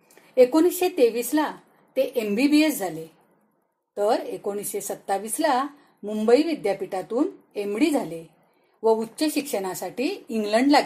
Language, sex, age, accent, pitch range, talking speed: Marathi, female, 40-59, native, 200-270 Hz, 110 wpm